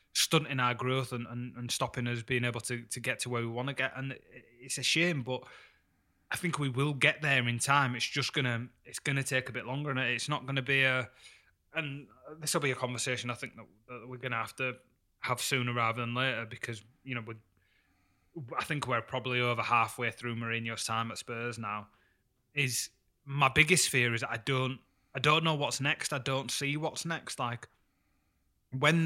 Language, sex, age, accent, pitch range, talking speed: English, male, 20-39, British, 120-135 Hz, 205 wpm